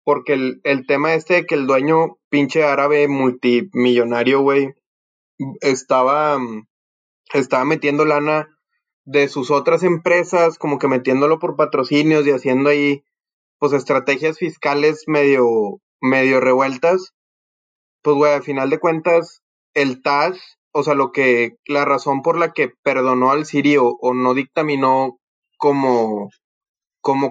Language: Spanish